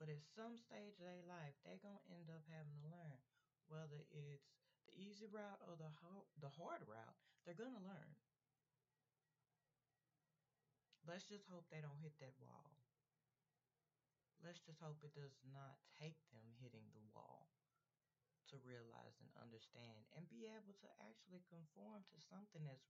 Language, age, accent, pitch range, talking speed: English, 30-49, American, 145-180 Hz, 160 wpm